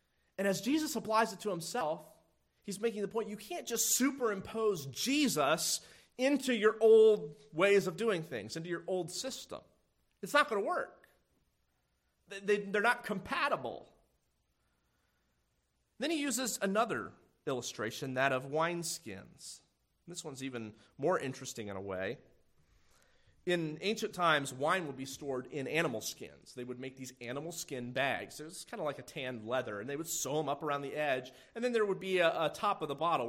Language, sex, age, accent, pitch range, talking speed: English, male, 30-49, American, 135-210 Hz, 175 wpm